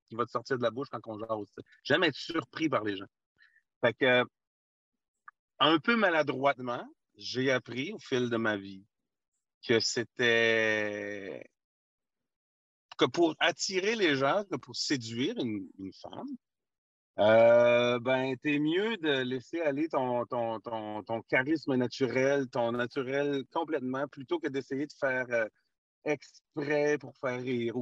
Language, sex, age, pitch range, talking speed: French, male, 40-59, 115-150 Hz, 145 wpm